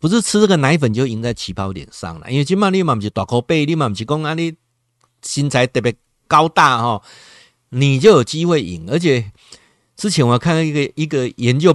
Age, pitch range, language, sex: 50-69, 100-140 Hz, Chinese, male